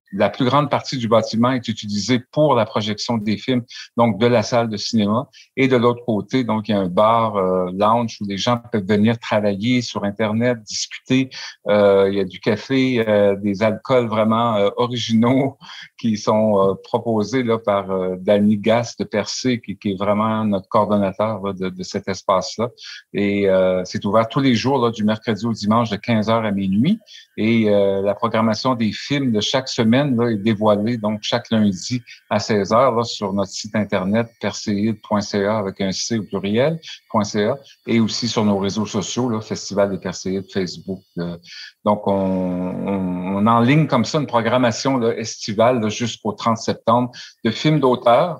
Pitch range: 100-125 Hz